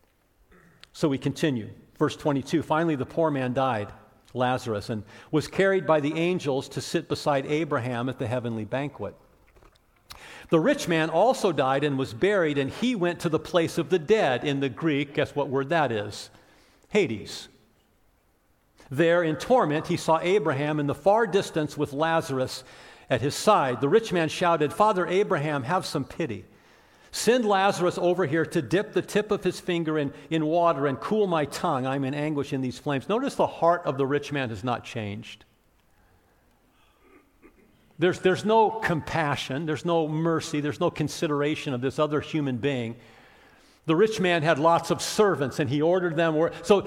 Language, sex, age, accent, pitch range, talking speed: English, male, 50-69, American, 135-175 Hz, 175 wpm